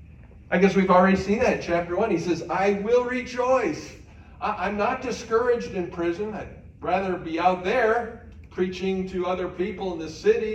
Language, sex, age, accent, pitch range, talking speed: English, male, 50-69, American, 130-190 Hz, 170 wpm